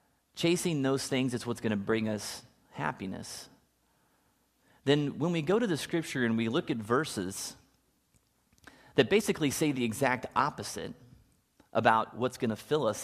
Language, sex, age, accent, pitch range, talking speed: English, male, 30-49, American, 110-140 Hz, 155 wpm